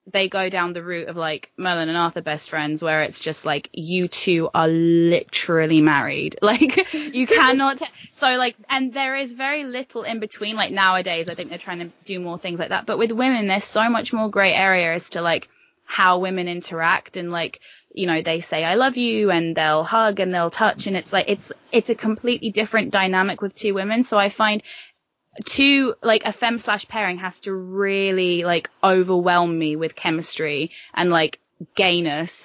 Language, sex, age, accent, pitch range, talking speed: English, female, 10-29, British, 165-215 Hz, 200 wpm